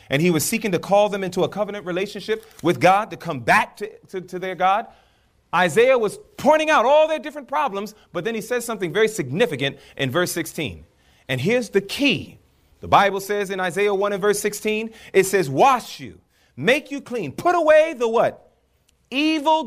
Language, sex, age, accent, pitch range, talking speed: English, male, 30-49, American, 135-230 Hz, 195 wpm